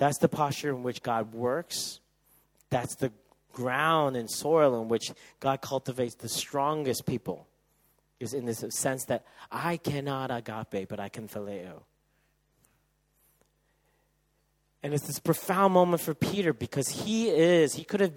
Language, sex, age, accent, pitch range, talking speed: English, male, 40-59, American, 120-155 Hz, 145 wpm